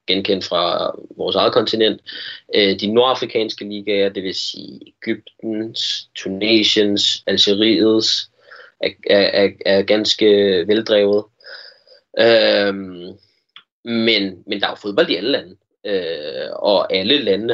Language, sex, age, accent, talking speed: Danish, male, 20-39, native, 110 wpm